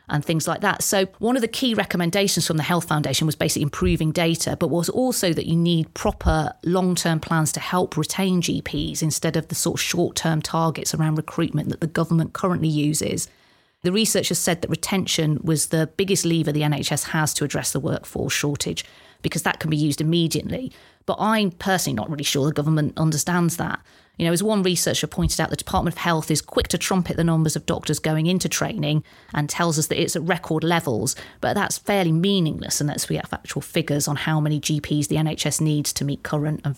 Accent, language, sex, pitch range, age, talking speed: British, English, female, 150-175 Hz, 30-49, 210 wpm